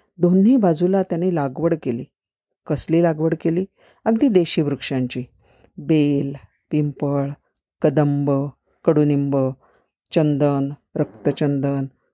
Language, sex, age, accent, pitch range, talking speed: Marathi, female, 50-69, native, 145-195 Hz, 85 wpm